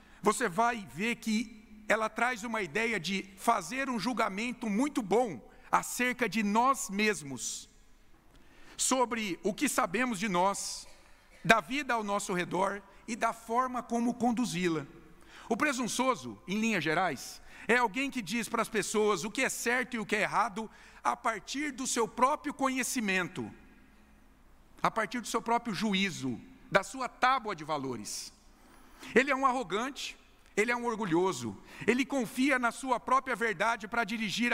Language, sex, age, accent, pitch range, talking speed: Portuguese, male, 50-69, Brazilian, 185-245 Hz, 155 wpm